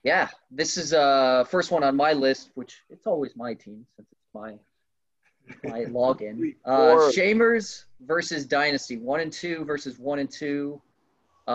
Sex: male